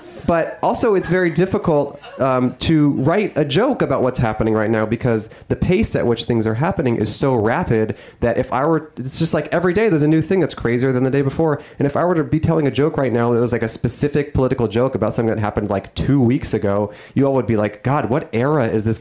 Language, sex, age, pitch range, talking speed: English, male, 30-49, 115-155 Hz, 255 wpm